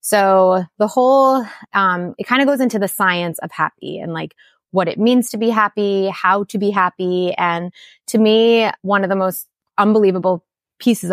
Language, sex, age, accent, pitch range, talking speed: English, female, 20-39, American, 180-225 Hz, 185 wpm